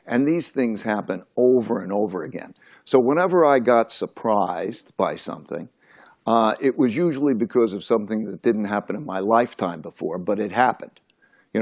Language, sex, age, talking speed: English, male, 60-79, 170 wpm